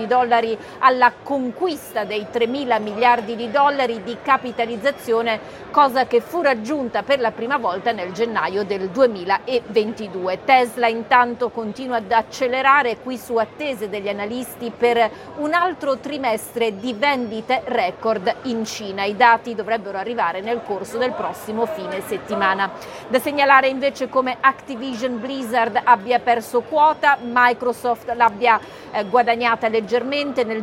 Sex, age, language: female, 40-59, Italian